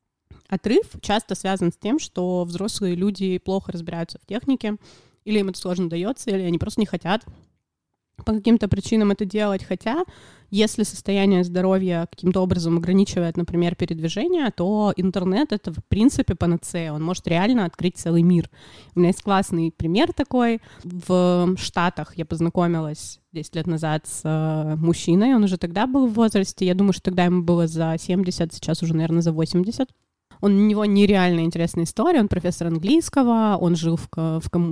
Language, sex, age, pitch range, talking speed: Russian, female, 20-39, 170-205 Hz, 165 wpm